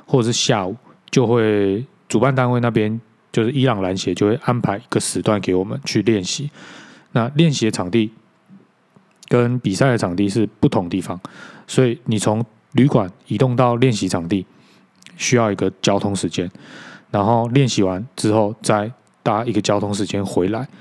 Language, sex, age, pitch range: Chinese, male, 20-39, 100-125 Hz